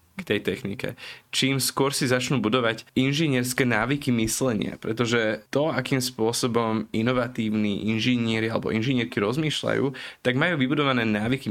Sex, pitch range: male, 105-120 Hz